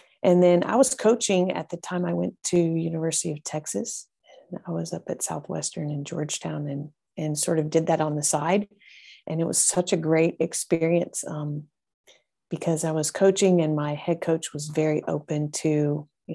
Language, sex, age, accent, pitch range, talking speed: English, female, 30-49, American, 150-175 Hz, 190 wpm